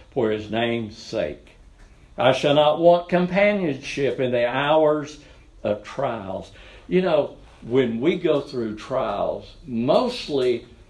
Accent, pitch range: American, 85-135 Hz